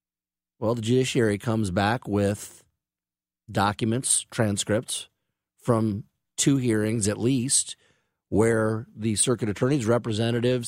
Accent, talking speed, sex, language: American, 100 wpm, male, English